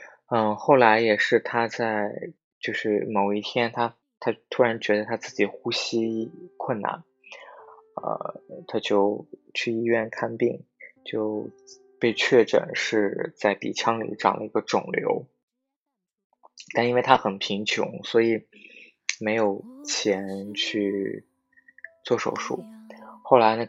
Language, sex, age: Chinese, male, 20-39